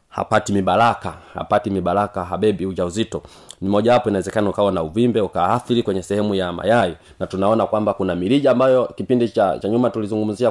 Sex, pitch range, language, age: male, 90-120 Hz, Swahili, 30-49